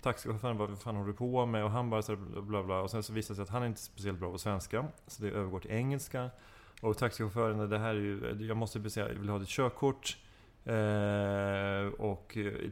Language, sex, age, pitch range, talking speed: English, male, 30-49, 100-115 Hz, 235 wpm